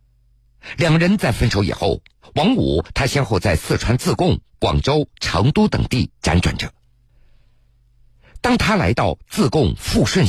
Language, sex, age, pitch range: Chinese, male, 50-69, 95-125 Hz